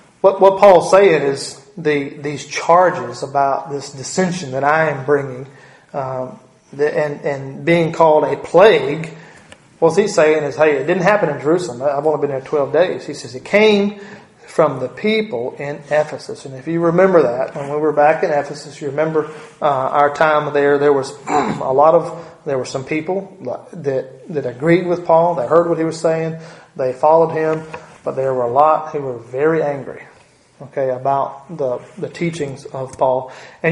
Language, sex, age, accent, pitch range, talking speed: English, male, 30-49, American, 140-165 Hz, 185 wpm